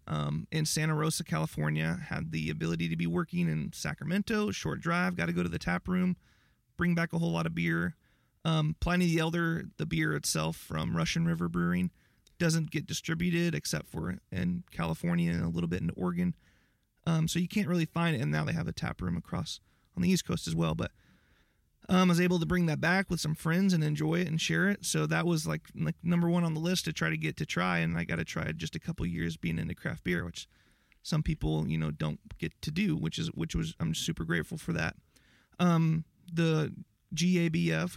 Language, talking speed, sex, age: English, 225 wpm, male, 30-49